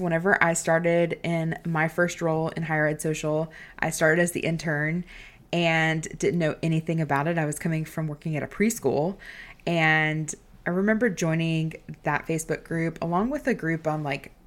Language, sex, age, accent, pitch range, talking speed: English, female, 20-39, American, 155-195 Hz, 180 wpm